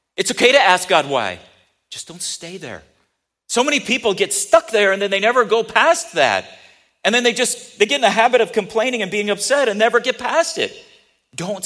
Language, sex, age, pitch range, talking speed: English, male, 40-59, 200-270 Hz, 220 wpm